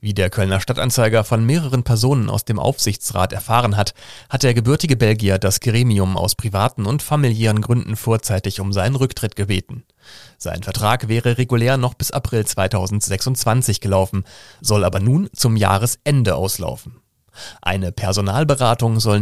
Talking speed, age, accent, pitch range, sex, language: 145 wpm, 40-59, German, 100-125 Hz, male, German